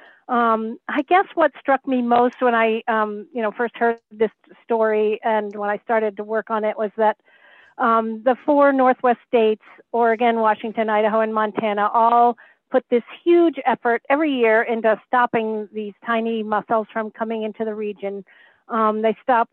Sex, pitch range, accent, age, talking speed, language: female, 220-245 Hz, American, 50-69, 165 wpm, English